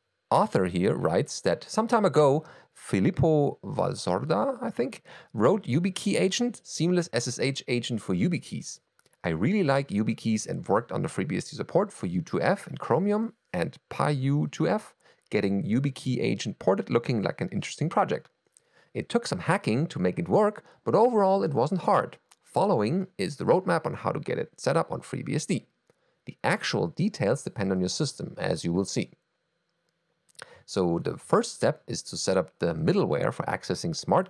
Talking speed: 165 wpm